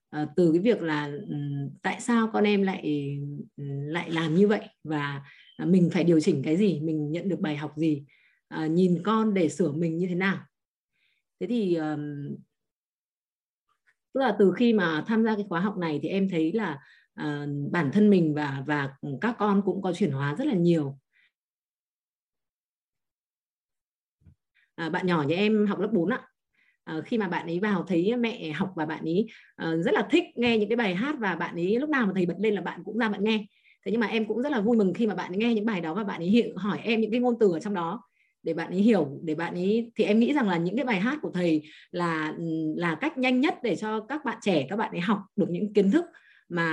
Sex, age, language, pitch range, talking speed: female, 20-39, Vietnamese, 165-220 Hz, 230 wpm